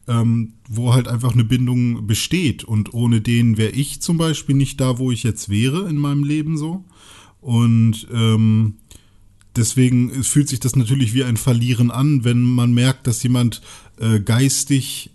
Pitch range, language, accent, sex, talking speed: 110-135 Hz, German, German, male, 160 wpm